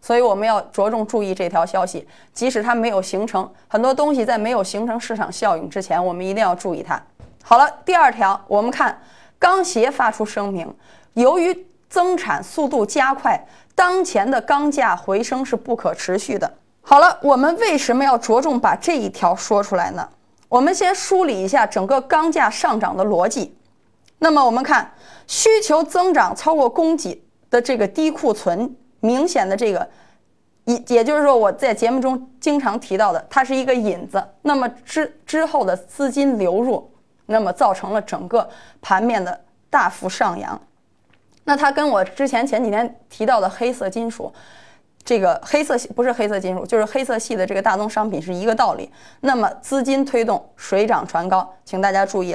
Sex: female